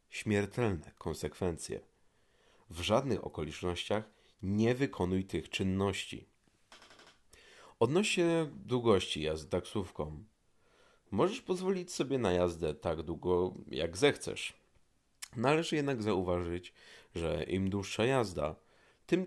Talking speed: 95 wpm